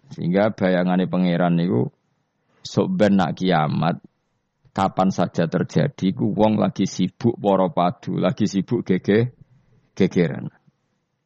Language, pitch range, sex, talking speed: Indonesian, 95-130 Hz, male, 100 wpm